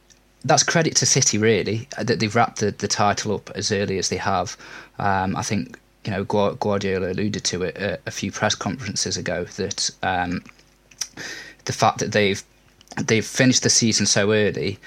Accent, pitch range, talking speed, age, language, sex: British, 105-125 Hz, 180 wpm, 20-39, English, male